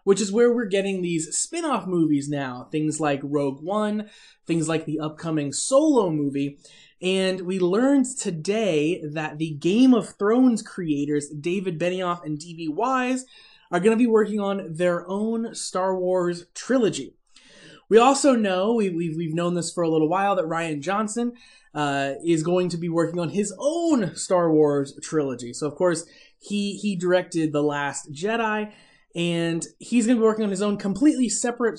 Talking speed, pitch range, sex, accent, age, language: 170 wpm, 155-210 Hz, male, American, 20-39, English